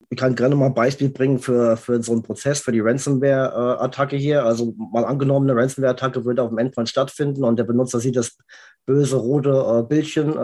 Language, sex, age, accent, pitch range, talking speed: German, male, 20-39, German, 115-135 Hz, 195 wpm